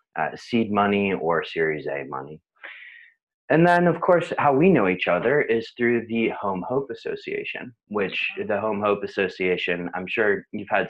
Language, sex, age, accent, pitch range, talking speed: English, male, 30-49, American, 85-115 Hz, 170 wpm